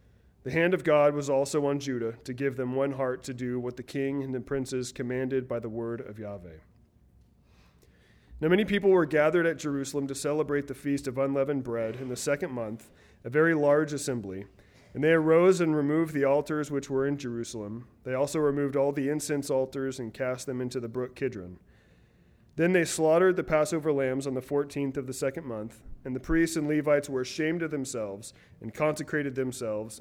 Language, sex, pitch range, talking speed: English, male, 120-150 Hz, 200 wpm